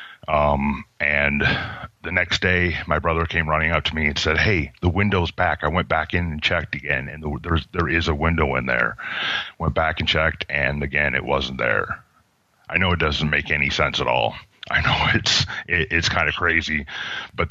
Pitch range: 80-95 Hz